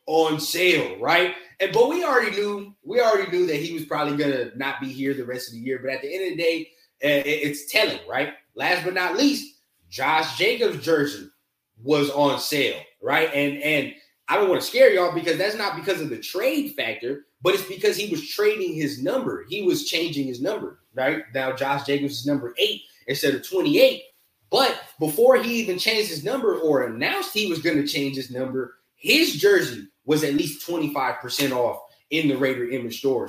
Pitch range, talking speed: 145-230 Hz, 205 wpm